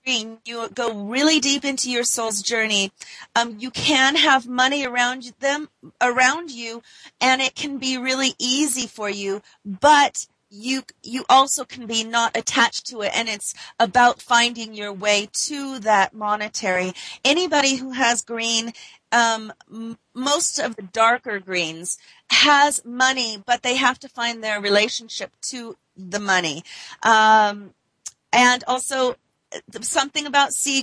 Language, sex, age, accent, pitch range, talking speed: English, female, 40-59, American, 225-270 Hz, 140 wpm